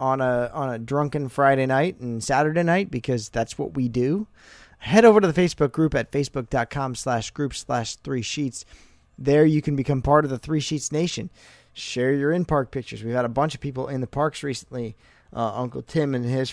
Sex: male